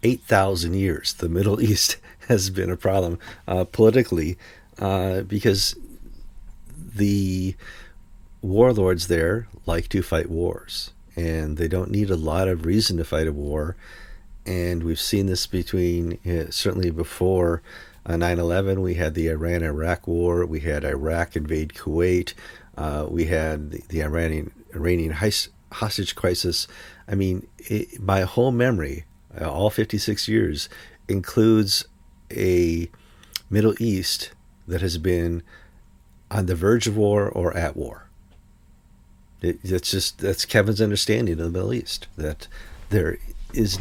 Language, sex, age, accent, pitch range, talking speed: English, male, 50-69, American, 85-105 Hz, 130 wpm